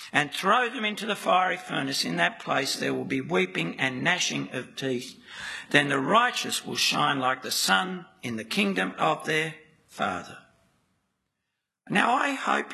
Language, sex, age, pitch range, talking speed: English, male, 60-79, 180-225 Hz, 165 wpm